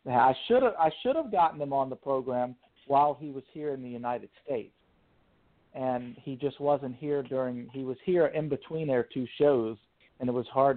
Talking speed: 200 wpm